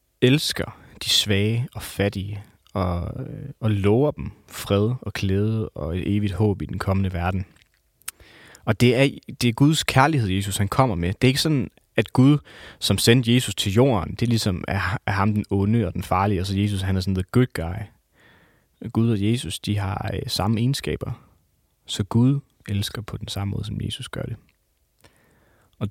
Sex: male